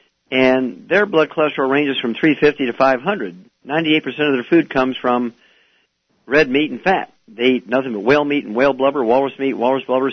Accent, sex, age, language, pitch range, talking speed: American, male, 50-69, English, 115-140 Hz, 190 wpm